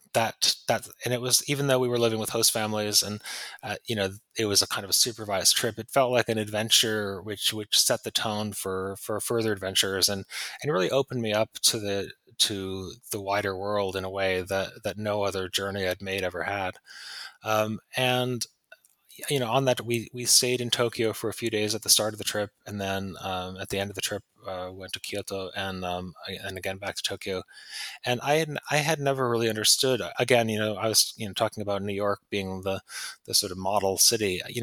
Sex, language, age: male, English, 20-39